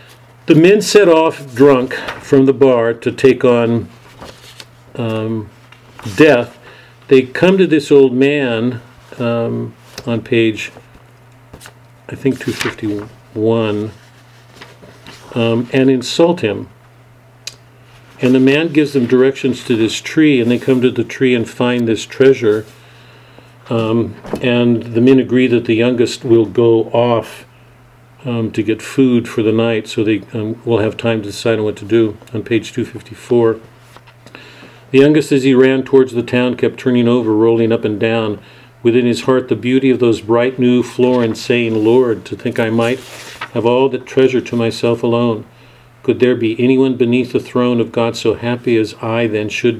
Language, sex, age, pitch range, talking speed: English, male, 50-69, 115-130 Hz, 165 wpm